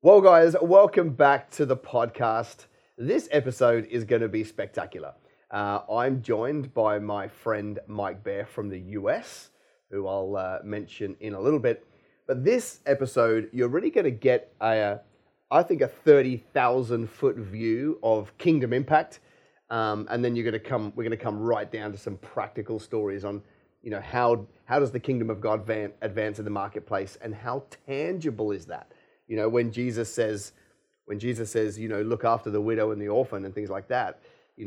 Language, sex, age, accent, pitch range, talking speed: English, male, 30-49, Australian, 105-140 Hz, 190 wpm